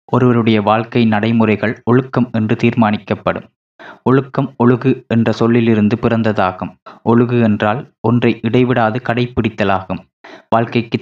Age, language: 20-39, Tamil